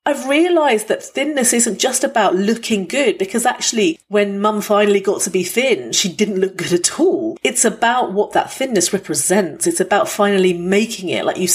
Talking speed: 190 wpm